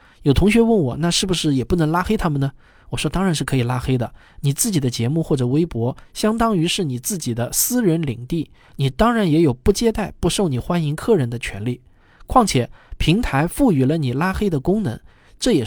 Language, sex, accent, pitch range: Chinese, male, native, 125-185 Hz